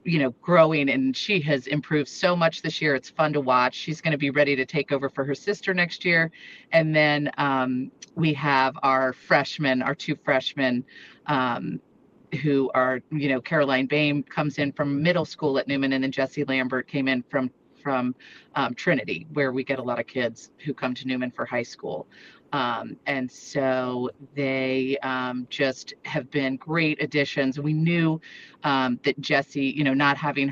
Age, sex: 30-49, female